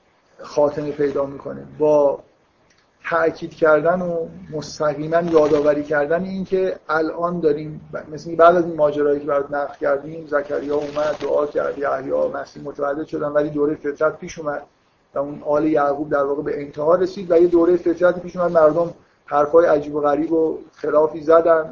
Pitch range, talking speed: 145-170 Hz, 165 wpm